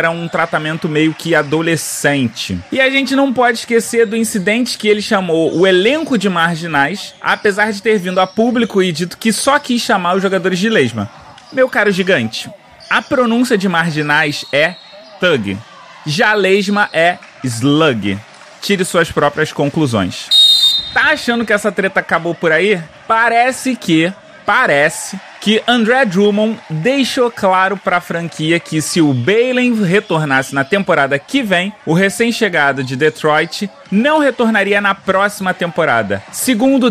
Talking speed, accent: 150 wpm, Brazilian